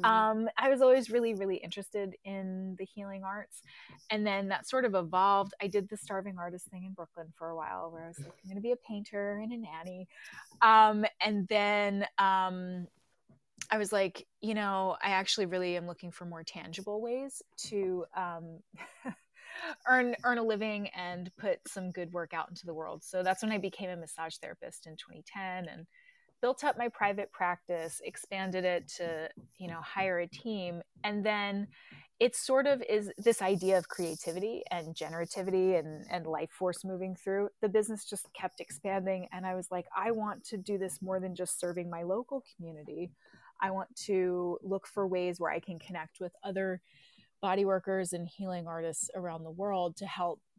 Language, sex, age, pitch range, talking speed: English, female, 20-39, 175-205 Hz, 185 wpm